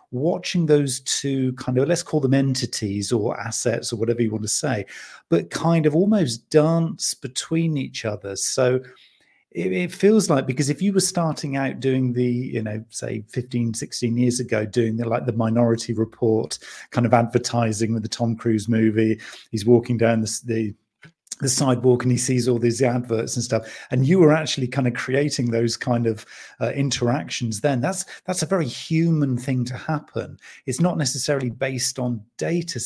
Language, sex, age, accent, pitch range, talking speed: English, male, 40-59, British, 115-145 Hz, 185 wpm